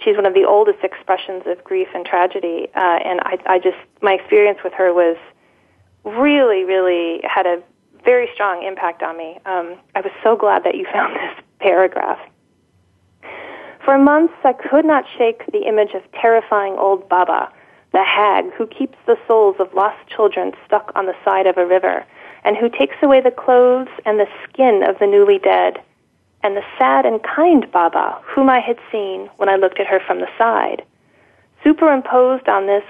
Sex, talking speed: female, 185 wpm